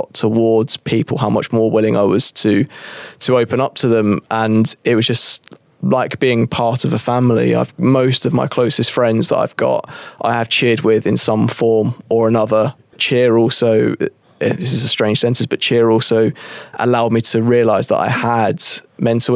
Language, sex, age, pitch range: English, male, 20-39, 110-120 Hz